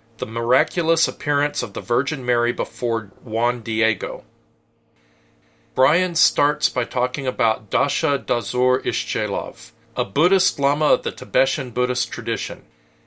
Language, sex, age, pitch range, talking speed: English, male, 40-59, 115-145 Hz, 120 wpm